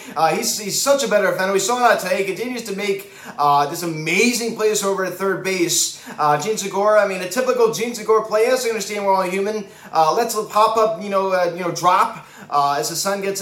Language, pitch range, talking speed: English, 170-225 Hz, 245 wpm